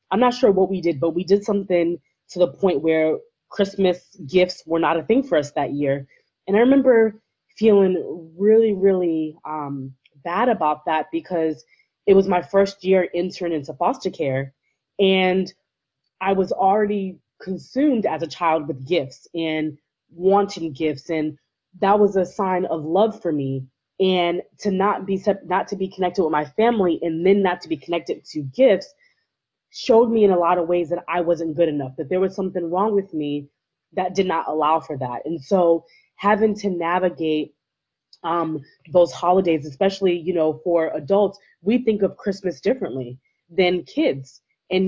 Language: English